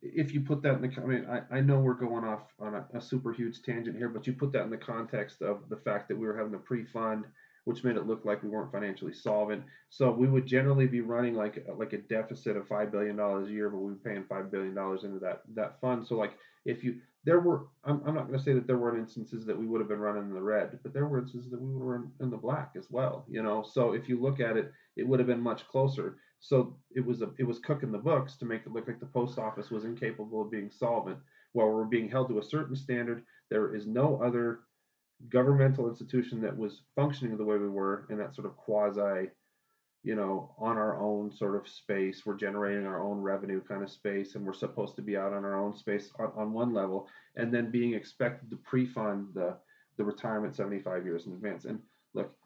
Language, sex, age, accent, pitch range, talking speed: English, male, 30-49, American, 105-125 Hz, 250 wpm